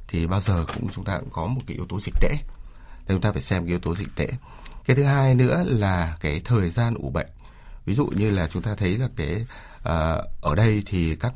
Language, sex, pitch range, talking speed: Vietnamese, male, 85-110 Hz, 255 wpm